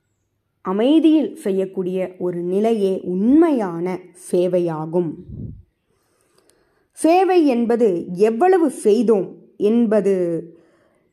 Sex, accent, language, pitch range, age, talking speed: female, native, Tamil, 185-295 Hz, 20-39, 60 wpm